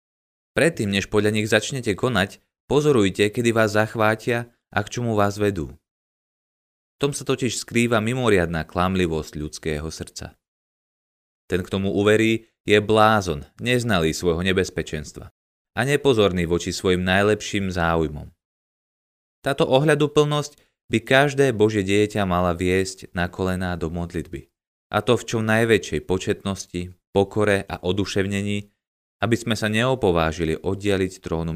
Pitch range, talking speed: 85-110 Hz, 125 wpm